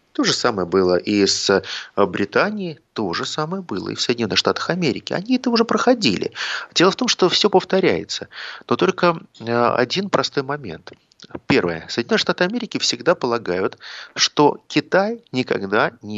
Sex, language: male, Russian